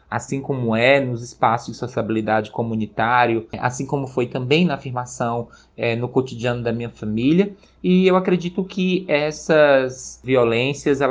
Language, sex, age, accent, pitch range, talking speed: Portuguese, male, 20-39, Brazilian, 120-155 Hz, 135 wpm